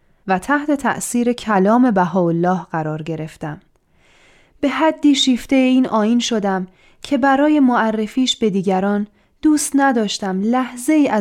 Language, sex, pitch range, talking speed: Persian, female, 195-255 Hz, 120 wpm